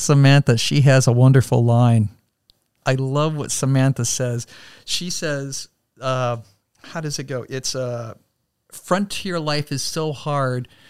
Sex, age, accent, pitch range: male, 50-69, American, 115-135 Hz